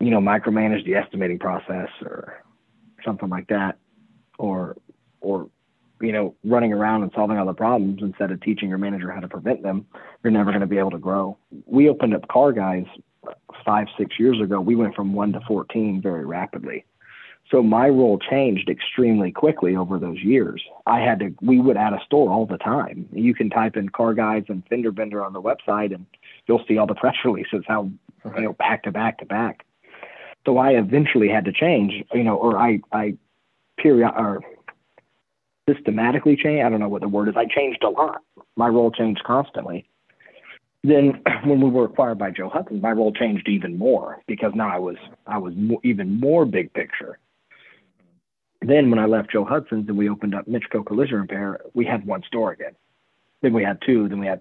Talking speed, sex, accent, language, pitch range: 200 wpm, male, American, English, 100-115 Hz